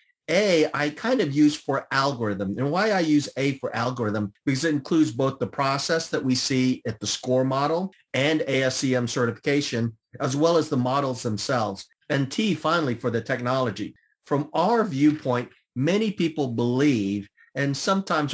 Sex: male